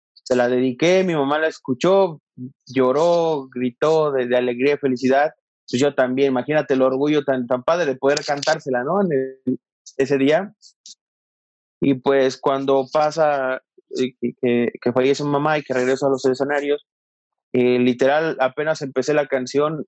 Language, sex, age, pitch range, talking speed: Spanish, male, 30-49, 125-145 Hz, 160 wpm